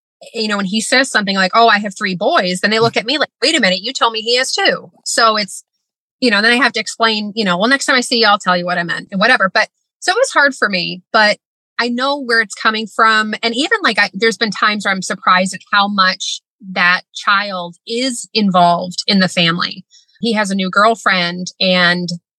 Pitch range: 185-245 Hz